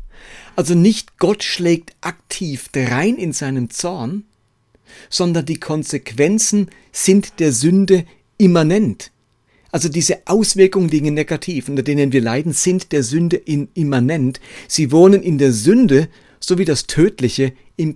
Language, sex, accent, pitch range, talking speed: German, male, German, 135-175 Hz, 135 wpm